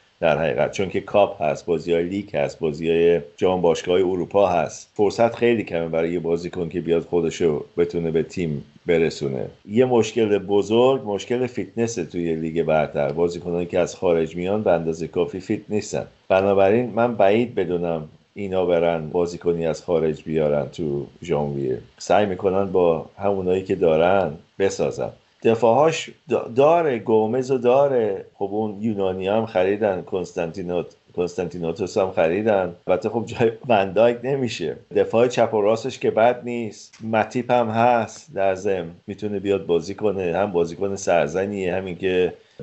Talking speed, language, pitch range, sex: 150 wpm, Persian, 85-110 Hz, male